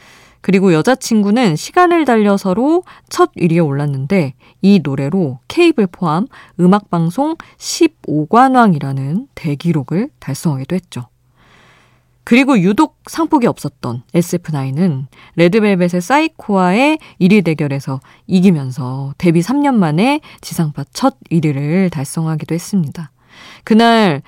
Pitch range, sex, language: 145-225 Hz, female, Korean